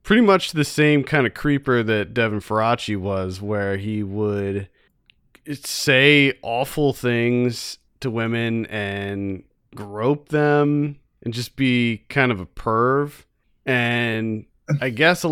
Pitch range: 110-140 Hz